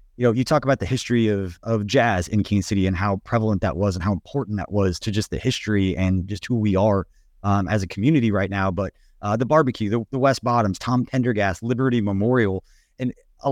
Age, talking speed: 30-49, 230 wpm